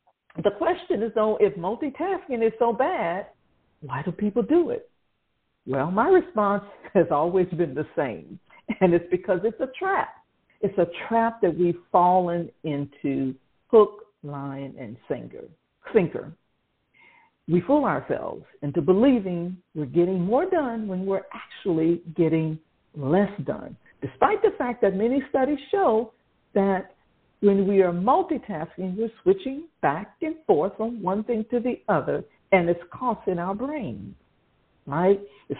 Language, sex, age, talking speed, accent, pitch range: English, female, 60-79, 140 wpm, American, 185-300 Hz